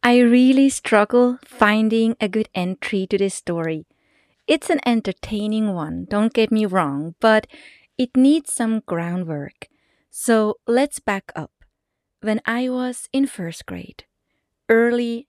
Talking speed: 135 wpm